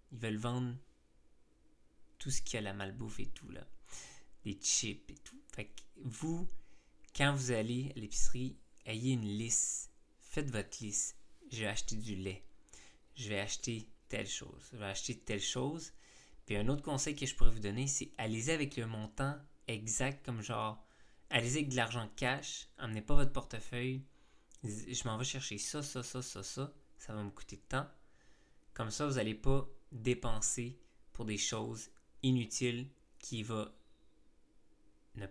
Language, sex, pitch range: French, male, 105-130 Hz